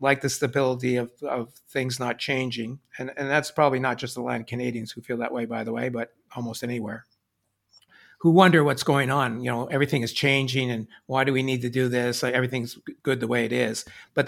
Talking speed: 225 wpm